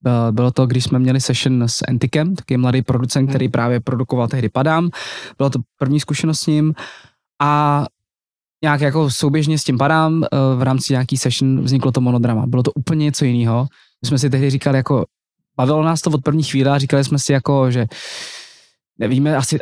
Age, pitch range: 20-39, 125-150 Hz